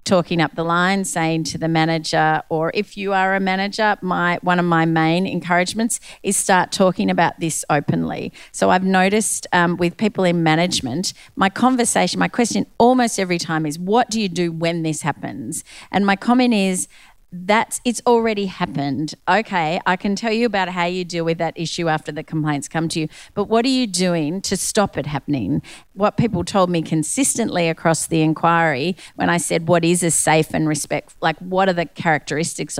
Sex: female